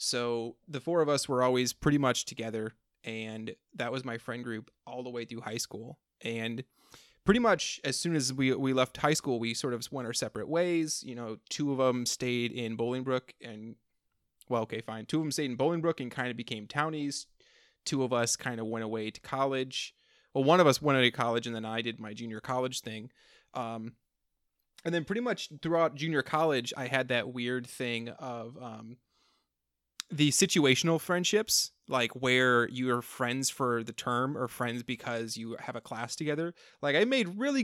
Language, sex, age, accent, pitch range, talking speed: English, male, 30-49, American, 115-150 Hz, 205 wpm